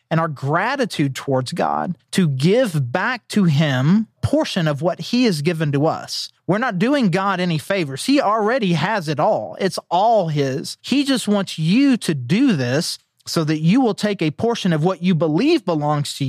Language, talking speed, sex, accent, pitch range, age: English, 190 wpm, male, American, 160-230 Hz, 30-49